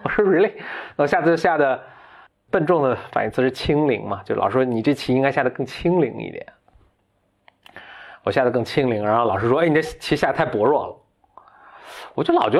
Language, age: Chinese, 20-39